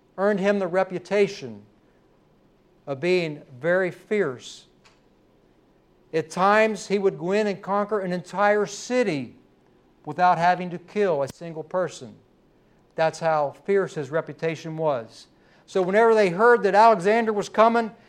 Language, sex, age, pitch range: English, male, 60-79, 160-205 Hz